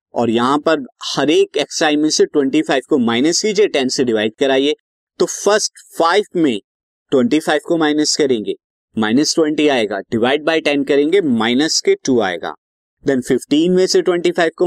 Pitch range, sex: 130-175 Hz, male